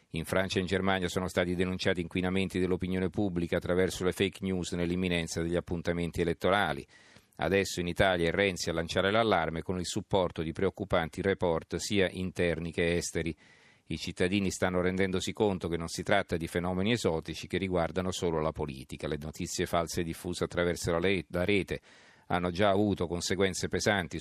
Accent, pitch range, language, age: native, 85-95 Hz, Italian, 40-59